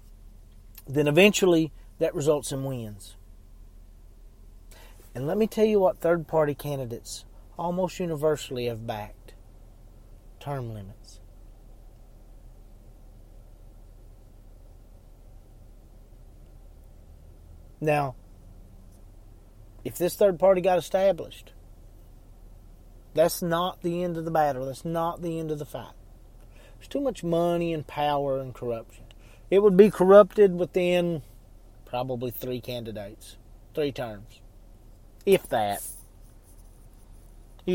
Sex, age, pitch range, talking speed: male, 40-59, 100-140 Hz, 100 wpm